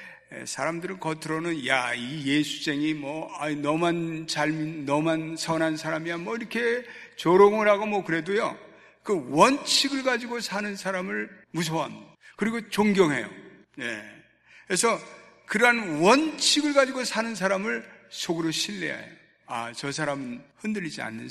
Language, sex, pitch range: Korean, male, 155-225 Hz